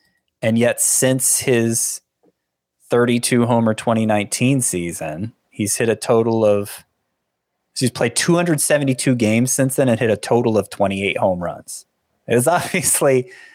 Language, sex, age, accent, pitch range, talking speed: English, male, 30-49, American, 105-140 Hz, 135 wpm